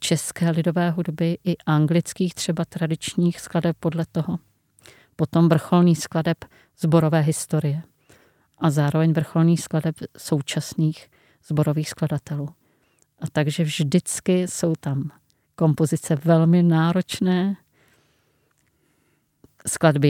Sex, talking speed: female, 95 wpm